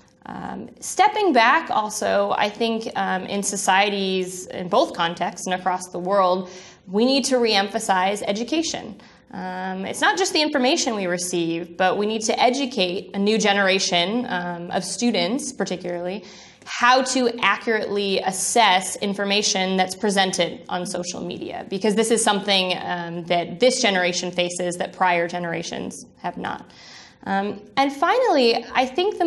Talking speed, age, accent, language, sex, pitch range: 145 wpm, 20-39, American, English, female, 185-240 Hz